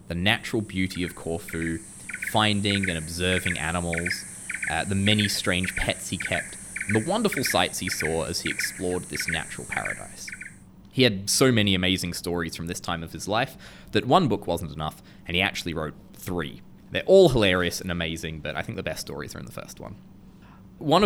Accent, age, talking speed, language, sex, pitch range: Australian, 20-39, 190 wpm, English, male, 85-105 Hz